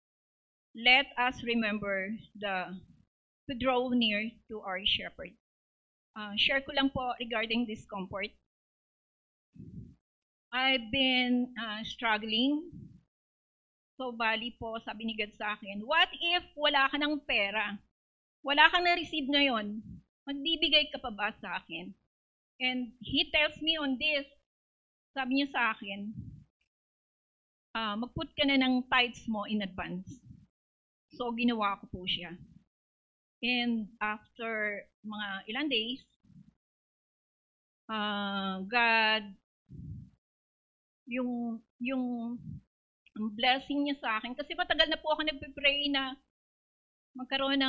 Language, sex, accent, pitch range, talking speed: English, female, Filipino, 210-265 Hz, 110 wpm